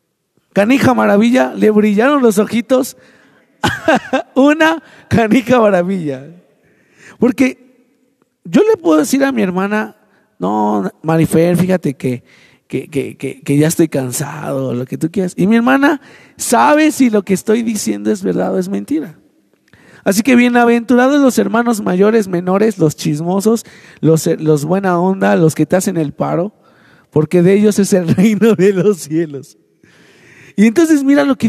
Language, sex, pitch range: Spanish, male, 165-245 Hz